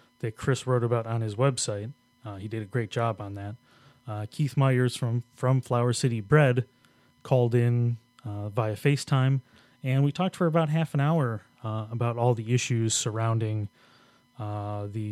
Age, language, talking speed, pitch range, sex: 30-49, English, 175 wpm, 110-125 Hz, male